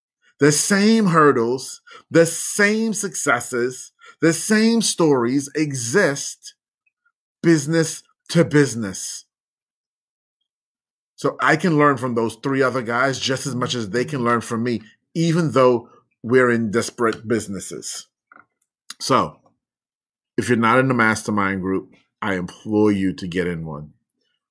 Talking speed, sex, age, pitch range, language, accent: 125 wpm, male, 30-49, 110-145 Hz, English, American